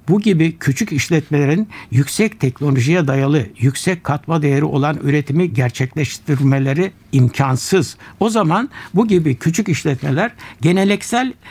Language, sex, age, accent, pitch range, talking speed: Turkish, male, 60-79, native, 140-185 Hz, 110 wpm